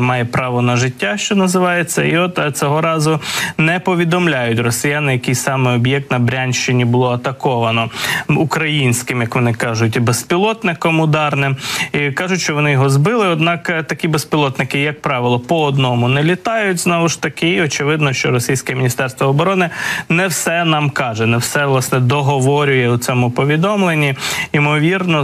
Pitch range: 130-155 Hz